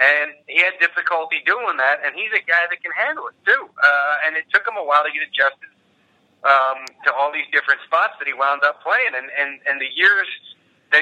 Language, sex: English, male